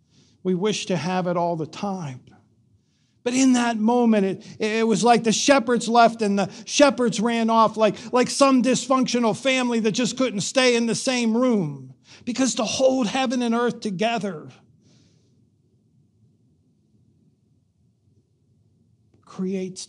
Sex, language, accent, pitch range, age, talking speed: male, English, American, 120-200 Hz, 50-69, 135 wpm